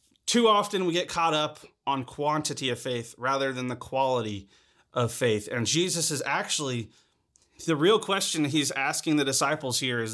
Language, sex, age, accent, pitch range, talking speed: English, male, 30-49, American, 130-165 Hz, 170 wpm